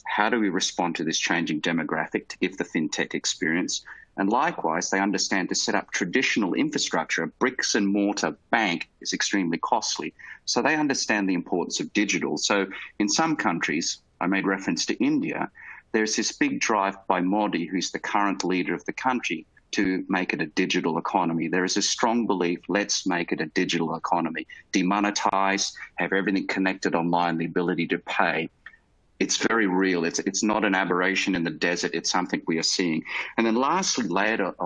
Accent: Australian